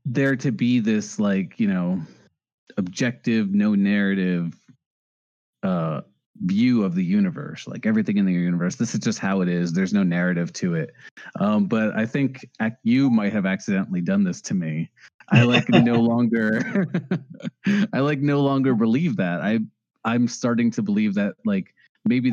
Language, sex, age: English, male, 30-49